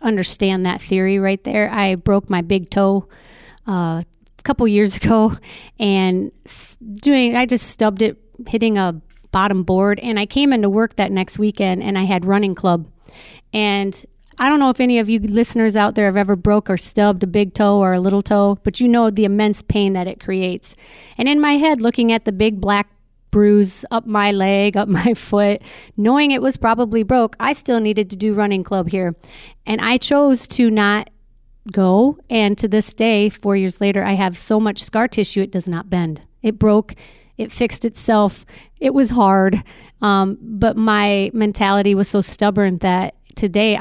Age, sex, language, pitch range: 40-59, female, English, 195-225 Hz